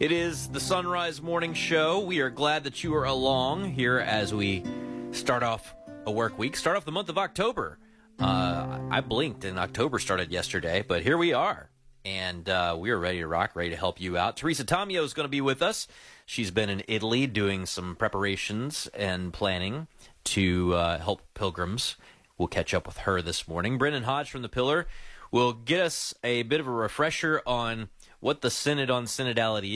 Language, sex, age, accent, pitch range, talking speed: English, male, 30-49, American, 90-135 Hz, 195 wpm